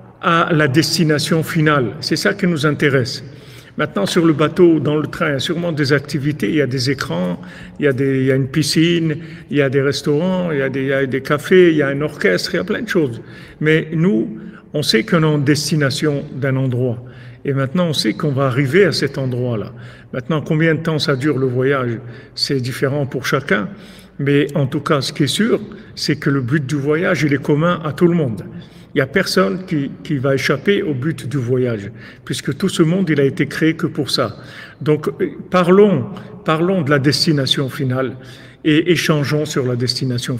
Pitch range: 135-165 Hz